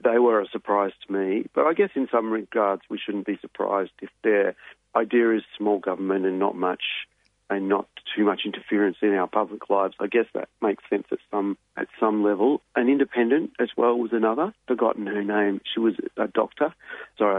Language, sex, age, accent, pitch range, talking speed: English, male, 40-59, Australian, 100-115 Hz, 200 wpm